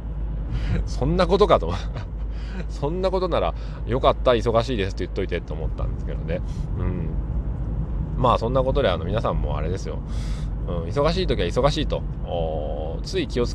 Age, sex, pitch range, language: 20-39, male, 90-145 Hz, Japanese